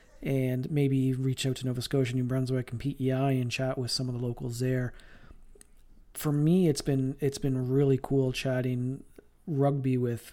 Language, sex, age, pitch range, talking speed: English, male, 40-59, 125-145 Hz, 175 wpm